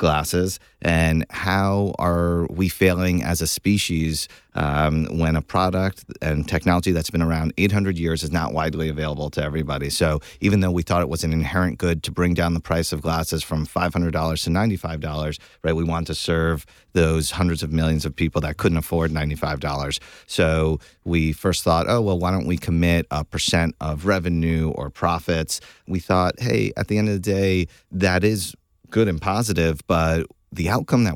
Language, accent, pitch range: English, American, 80-95 Hz